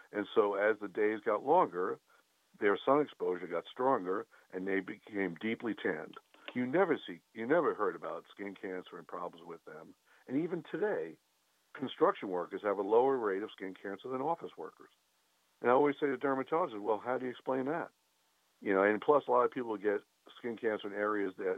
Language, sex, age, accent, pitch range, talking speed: English, male, 60-79, American, 95-145 Hz, 195 wpm